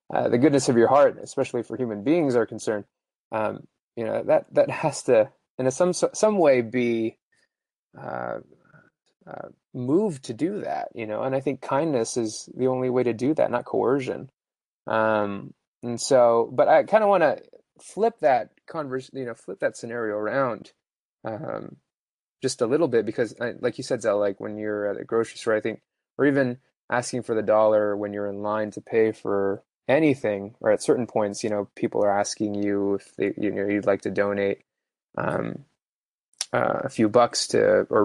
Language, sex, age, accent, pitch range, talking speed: English, male, 20-39, American, 105-130 Hz, 195 wpm